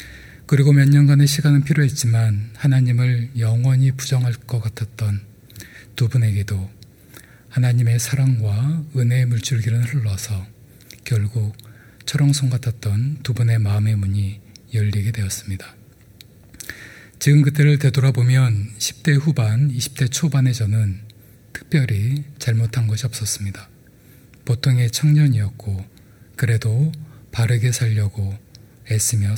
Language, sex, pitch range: Korean, male, 110-130 Hz